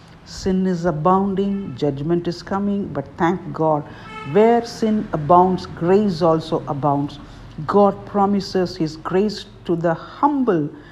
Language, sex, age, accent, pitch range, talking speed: English, female, 60-79, Indian, 150-190 Hz, 120 wpm